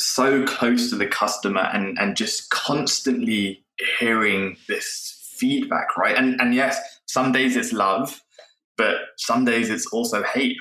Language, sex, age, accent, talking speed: English, male, 20-39, British, 145 wpm